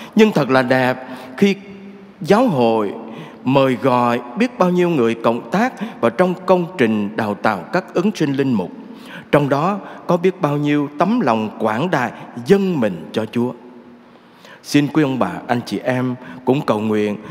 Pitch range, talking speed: 130-200 Hz, 175 wpm